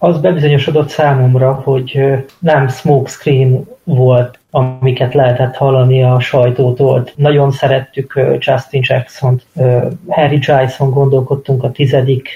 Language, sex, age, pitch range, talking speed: Hungarian, male, 30-49, 130-145 Hz, 100 wpm